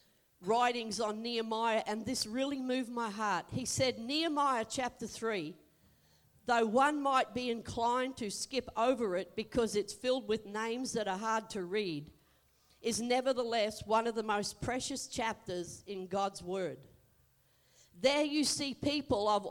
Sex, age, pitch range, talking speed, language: female, 50-69, 190-255 Hz, 150 wpm, English